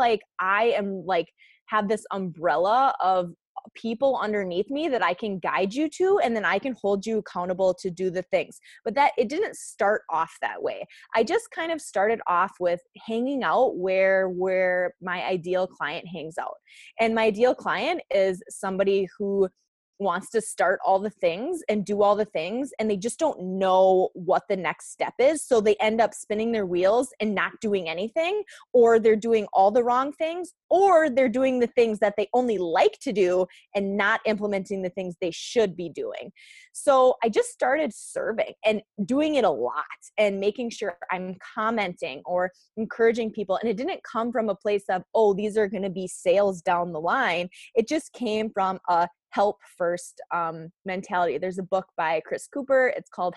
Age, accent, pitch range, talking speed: 20-39, American, 190-265 Hz, 190 wpm